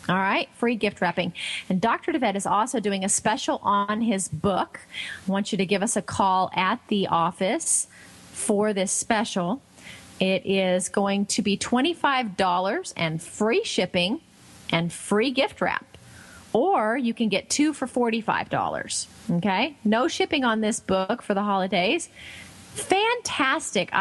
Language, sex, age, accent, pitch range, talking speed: English, female, 30-49, American, 185-235 Hz, 150 wpm